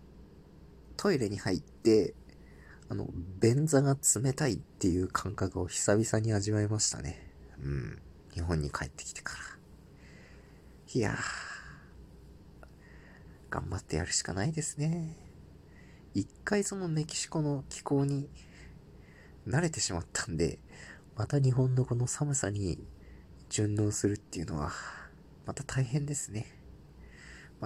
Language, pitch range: Japanese, 85-135 Hz